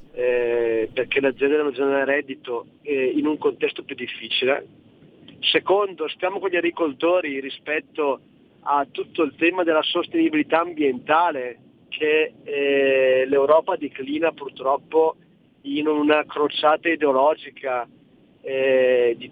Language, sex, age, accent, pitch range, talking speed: Italian, male, 40-59, native, 140-200 Hz, 115 wpm